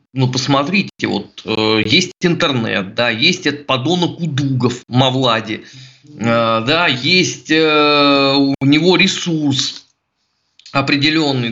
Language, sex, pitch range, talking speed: Russian, male, 130-170 Hz, 110 wpm